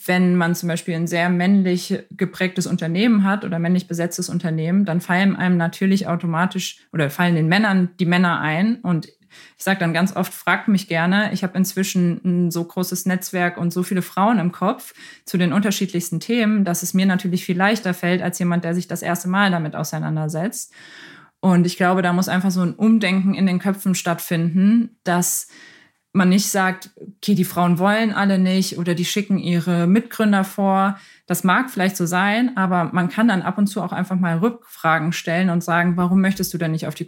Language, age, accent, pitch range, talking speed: German, 20-39, German, 175-195 Hz, 200 wpm